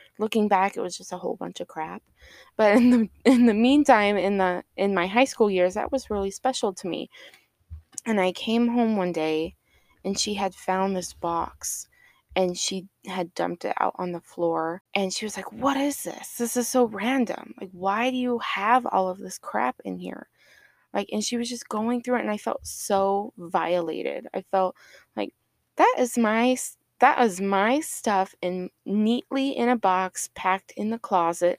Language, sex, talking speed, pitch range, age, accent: English, female, 200 wpm, 185-240 Hz, 20-39, American